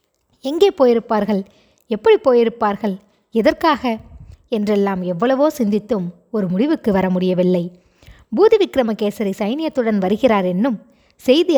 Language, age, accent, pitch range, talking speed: Tamil, 20-39, native, 190-255 Hz, 90 wpm